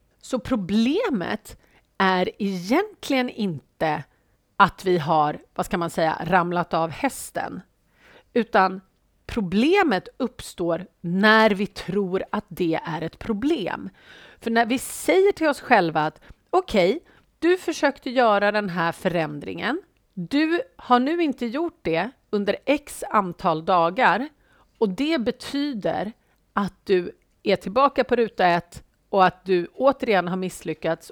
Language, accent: Swedish, native